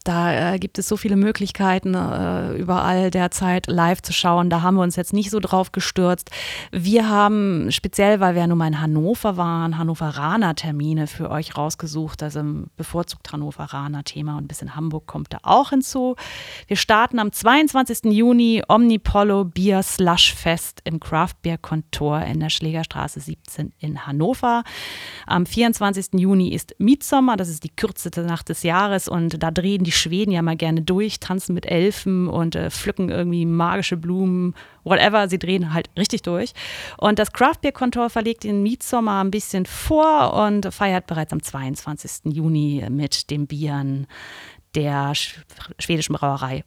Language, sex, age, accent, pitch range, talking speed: German, female, 30-49, German, 155-205 Hz, 170 wpm